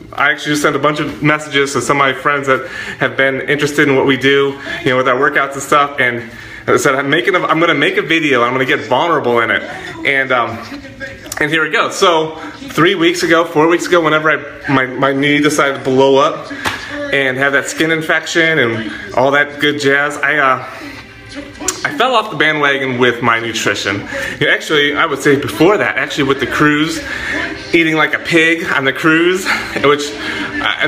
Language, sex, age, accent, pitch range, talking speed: English, male, 30-49, American, 140-170 Hz, 210 wpm